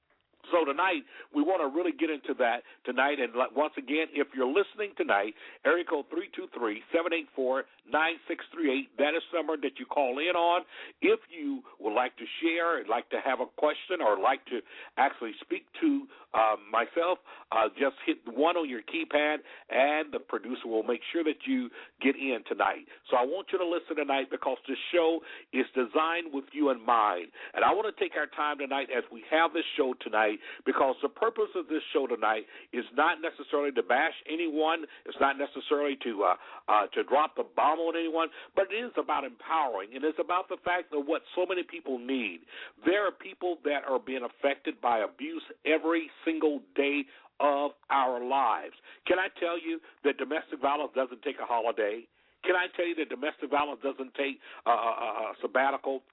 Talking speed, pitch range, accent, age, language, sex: 190 wpm, 140-180 Hz, American, 60-79, English, male